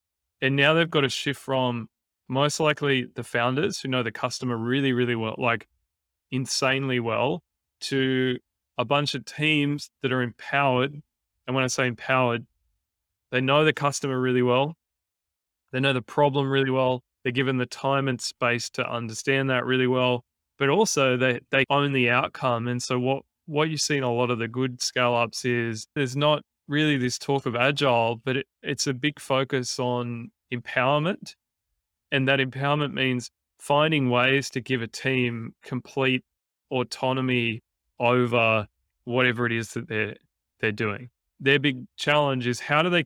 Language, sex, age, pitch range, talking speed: English, male, 20-39, 120-140 Hz, 165 wpm